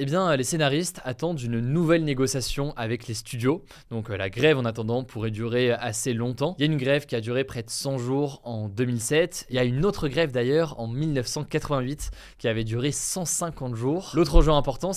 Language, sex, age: French, male, 20-39